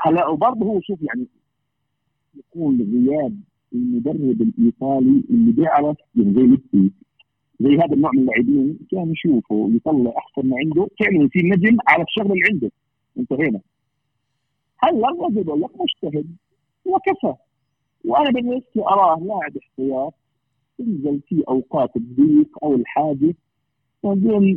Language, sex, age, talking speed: Arabic, male, 50-69, 125 wpm